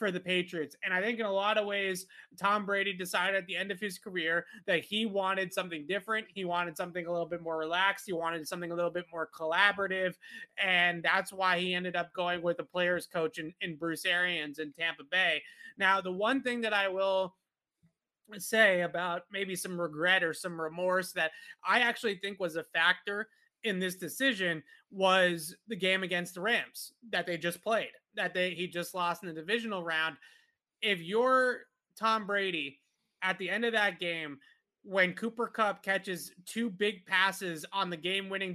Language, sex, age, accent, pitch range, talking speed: English, male, 30-49, American, 175-210 Hz, 190 wpm